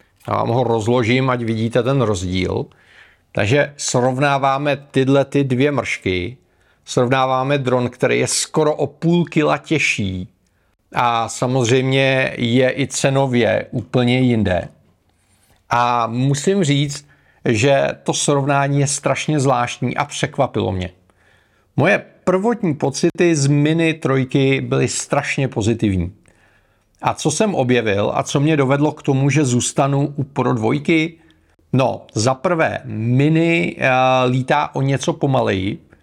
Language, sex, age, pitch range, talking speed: Czech, male, 40-59, 115-145 Hz, 125 wpm